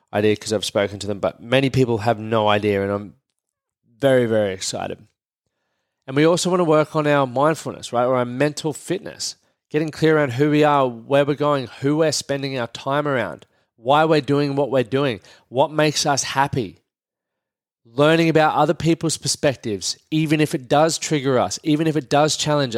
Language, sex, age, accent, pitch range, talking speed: English, male, 20-39, Australian, 120-150 Hz, 190 wpm